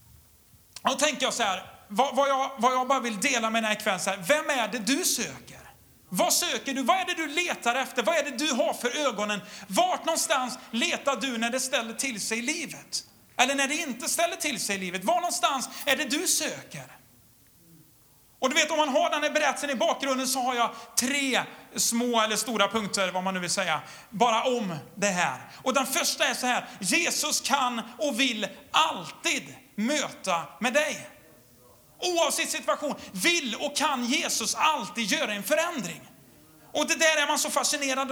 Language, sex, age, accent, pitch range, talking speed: Swedish, male, 40-59, native, 230-300 Hz, 190 wpm